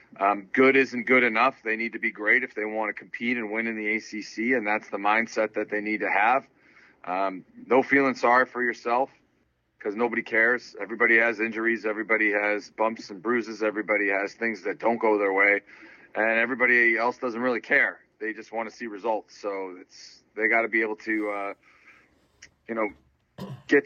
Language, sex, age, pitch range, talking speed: English, male, 30-49, 110-125 Hz, 195 wpm